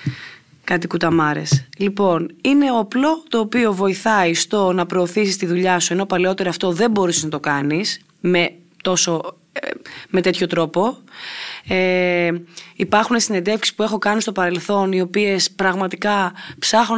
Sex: female